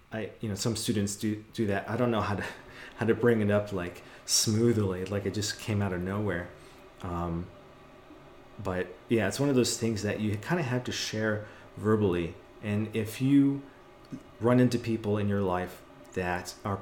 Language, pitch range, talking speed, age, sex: English, 95-115 Hz, 195 wpm, 30-49, male